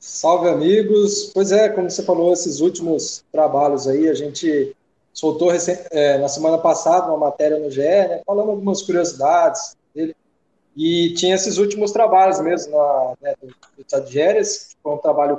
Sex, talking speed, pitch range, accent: male, 160 wpm, 150-195 Hz, Brazilian